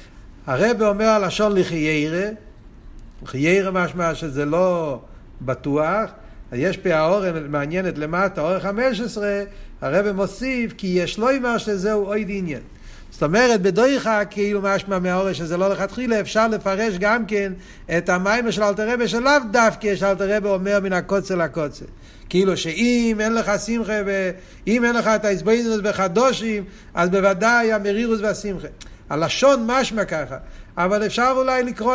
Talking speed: 145 wpm